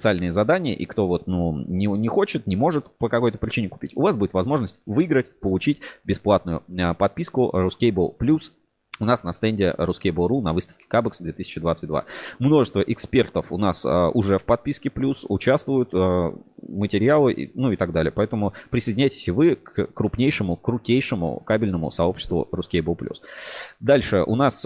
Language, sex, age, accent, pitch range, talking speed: Russian, male, 20-39, native, 90-115 Hz, 165 wpm